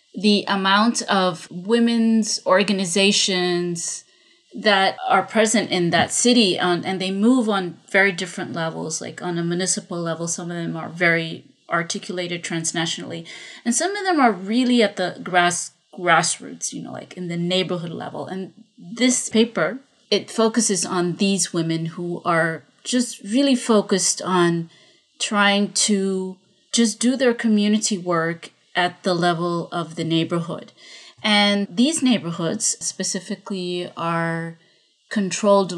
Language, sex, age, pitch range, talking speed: English, female, 30-49, 175-225 Hz, 135 wpm